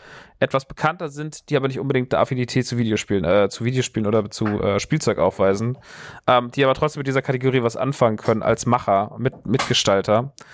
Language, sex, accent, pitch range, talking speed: German, male, German, 110-145 Hz, 190 wpm